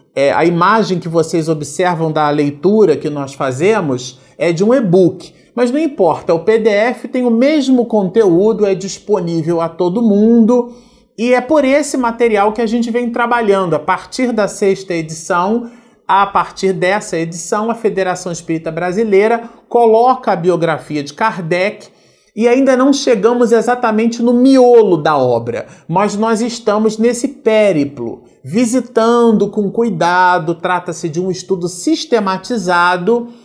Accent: Brazilian